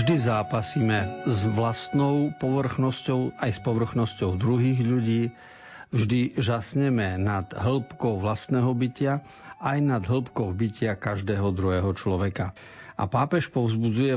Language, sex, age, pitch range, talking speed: Slovak, male, 50-69, 105-130 Hz, 110 wpm